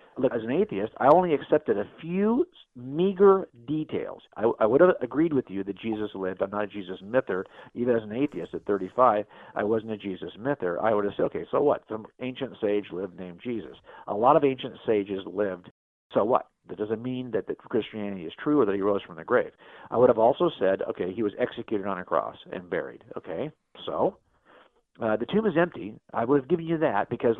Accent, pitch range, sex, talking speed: American, 115-175 Hz, male, 220 wpm